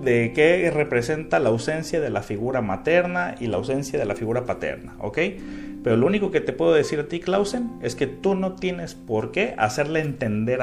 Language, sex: Spanish, male